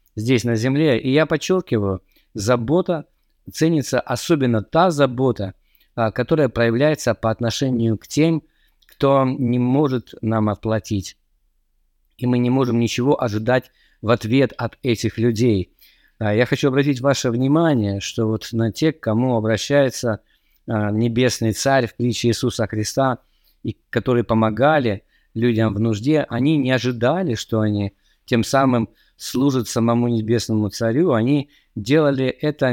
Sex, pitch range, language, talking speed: male, 110-130 Hz, Russian, 130 wpm